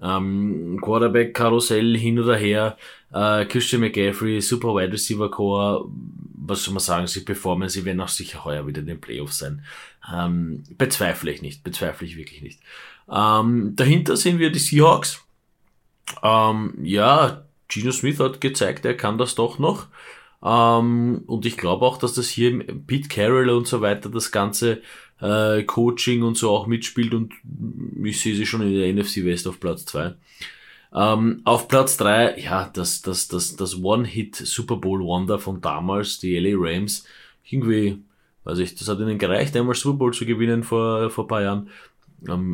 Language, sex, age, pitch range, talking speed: German, male, 30-49, 95-115 Hz, 165 wpm